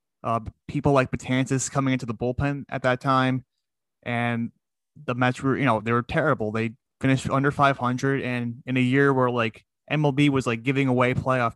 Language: English